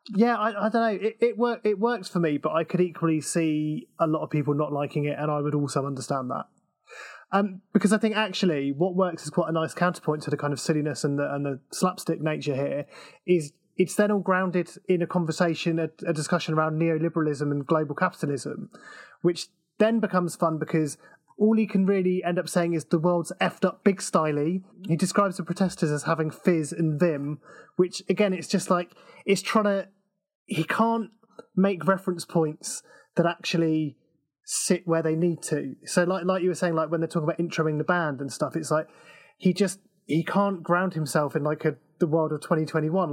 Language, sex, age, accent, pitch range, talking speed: English, male, 20-39, British, 155-190 Hz, 205 wpm